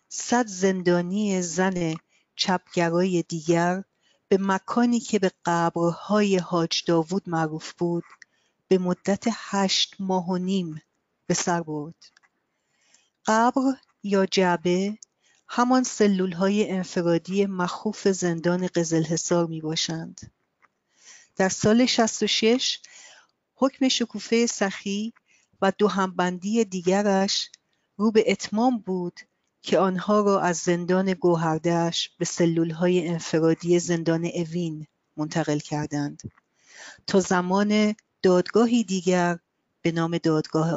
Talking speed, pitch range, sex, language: 100 wpm, 170-210 Hz, female, Persian